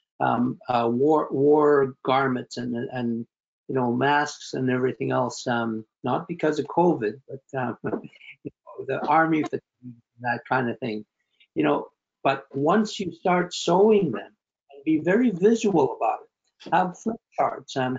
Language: English